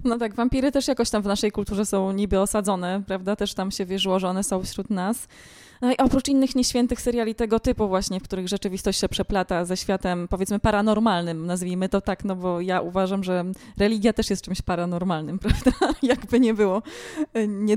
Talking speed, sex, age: 195 wpm, female, 20-39